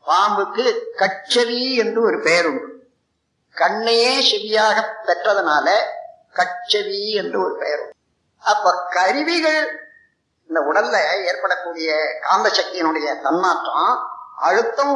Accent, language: native, Tamil